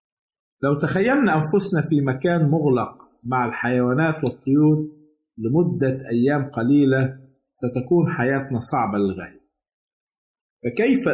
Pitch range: 130-160 Hz